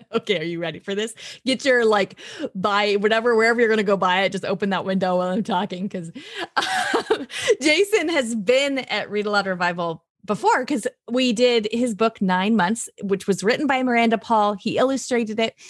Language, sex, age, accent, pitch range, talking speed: English, female, 30-49, American, 190-250 Hz, 200 wpm